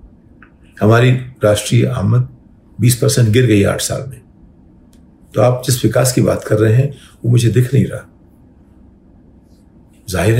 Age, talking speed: 50-69, 150 wpm